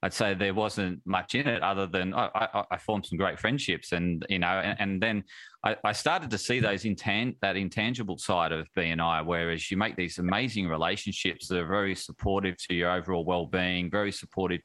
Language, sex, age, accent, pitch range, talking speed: English, male, 30-49, Australian, 90-110 Hz, 210 wpm